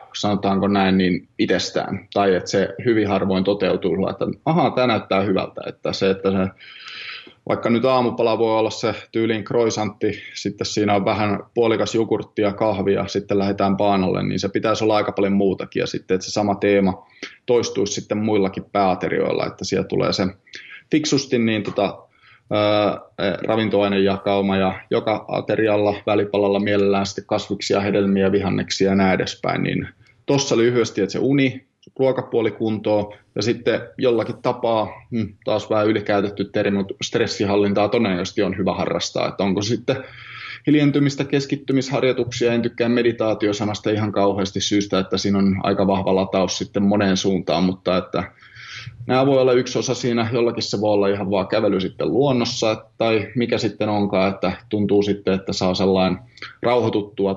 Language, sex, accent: Finnish, male, native